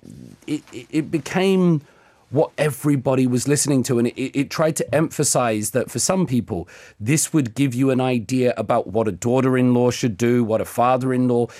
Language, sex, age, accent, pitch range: Korean, male, 40-59, British, 110-135 Hz